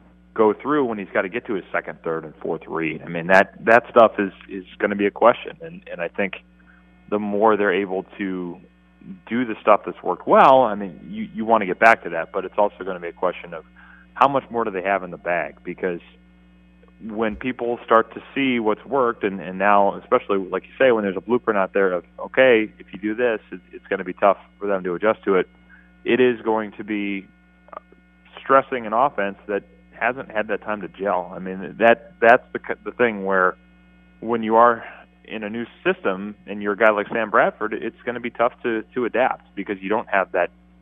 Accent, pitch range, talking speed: American, 85-110 Hz, 230 wpm